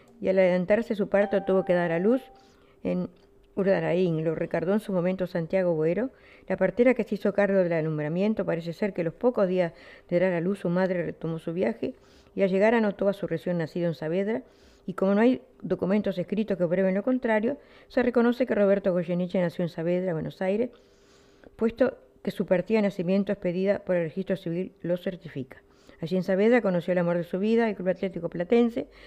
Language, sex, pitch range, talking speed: Spanish, female, 175-210 Hz, 200 wpm